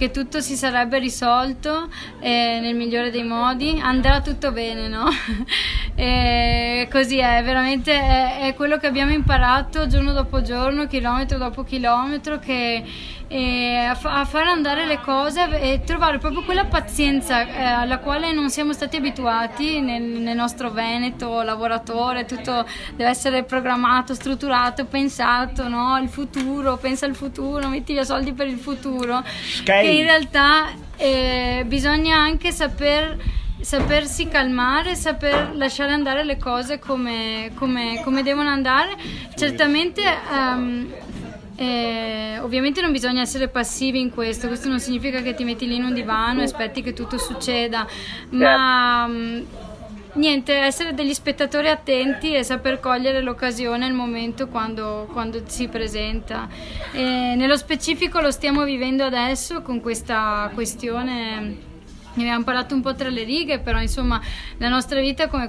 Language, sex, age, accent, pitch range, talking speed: Italian, female, 20-39, native, 240-285 Hz, 140 wpm